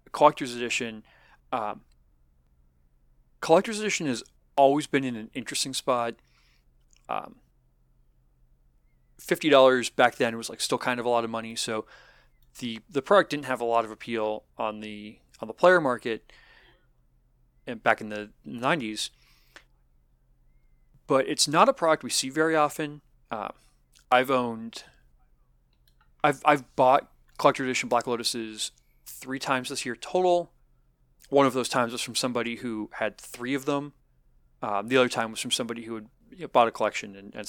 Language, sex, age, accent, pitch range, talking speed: English, male, 30-49, American, 105-135 Hz, 155 wpm